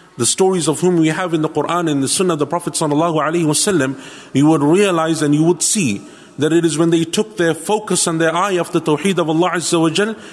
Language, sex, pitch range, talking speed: English, male, 150-185 Hz, 255 wpm